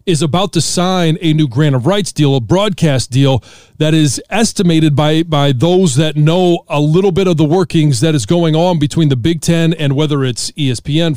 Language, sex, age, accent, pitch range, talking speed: English, male, 40-59, American, 140-170 Hz, 210 wpm